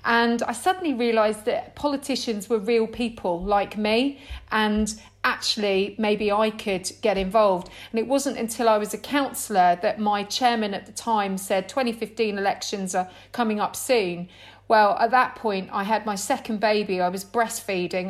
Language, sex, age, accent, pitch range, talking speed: English, female, 40-59, British, 195-230 Hz, 170 wpm